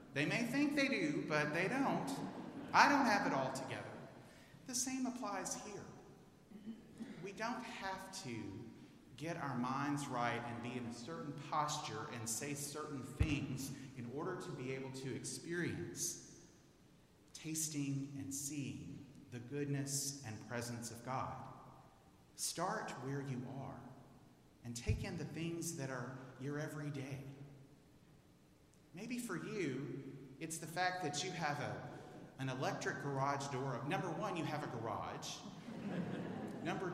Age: 40-59